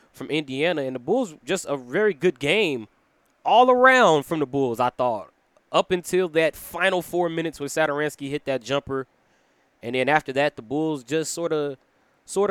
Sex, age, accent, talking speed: male, 20-39, American, 180 wpm